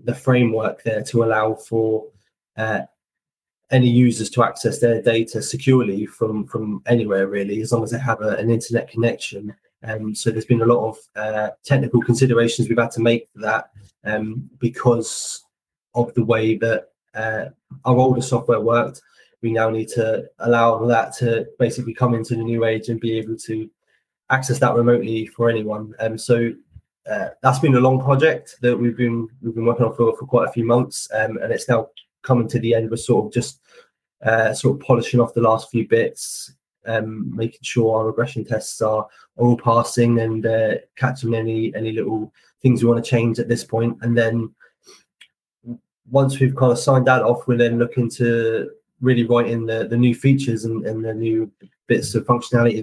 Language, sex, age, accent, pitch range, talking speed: English, male, 20-39, British, 110-120 Hz, 195 wpm